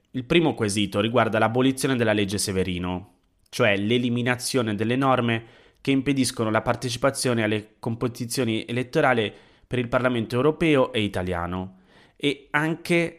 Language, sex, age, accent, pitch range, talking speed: Italian, male, 30-49, native, 95-125 Hz, 125 wpm